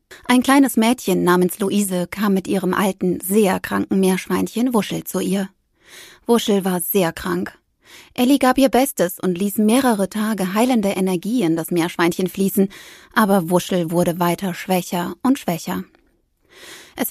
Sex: female